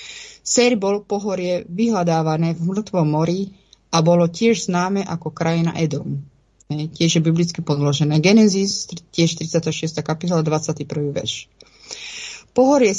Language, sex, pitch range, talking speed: Czech, female, 160-200 Hz, 115 wpm